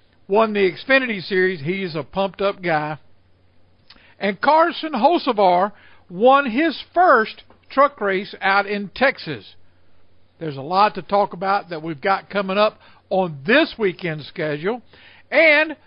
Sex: male